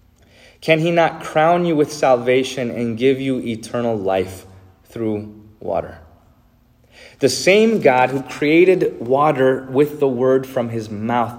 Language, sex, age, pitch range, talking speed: English, male, 30-49, 100-125 Hz, 135 wpm